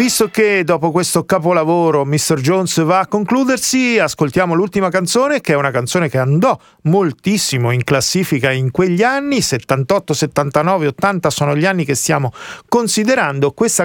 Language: Italian